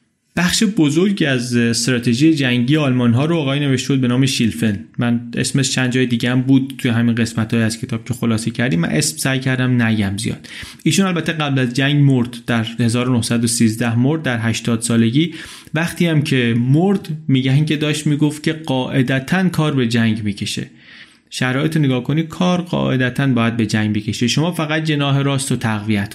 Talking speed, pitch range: 170 wpm, 115-150 Hz